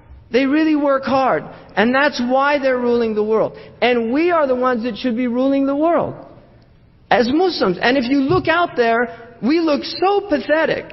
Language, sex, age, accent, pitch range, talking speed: English, male, 50-69, American, 275-330 Hz, 185 wpm